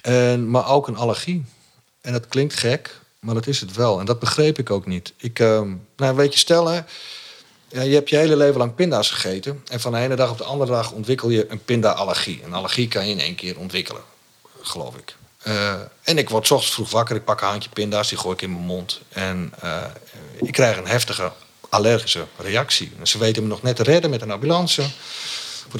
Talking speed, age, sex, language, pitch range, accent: 225 wpm, 40-59, male, Dutch, 95-130 Hz, Dutch